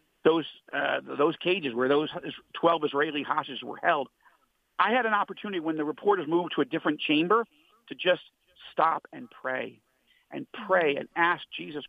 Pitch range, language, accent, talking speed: 155-210 Hz, English, American, 165 wpm